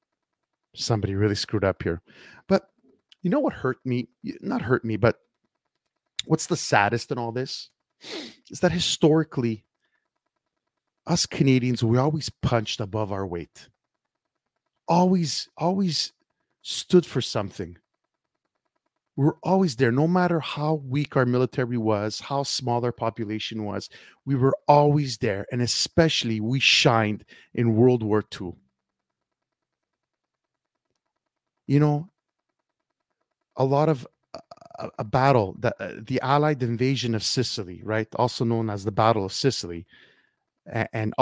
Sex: male